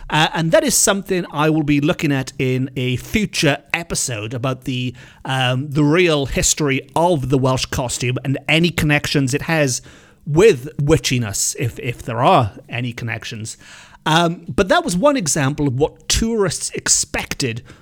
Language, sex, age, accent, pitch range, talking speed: English, male, 40-59, British, 135-185 Hz, 160 wpm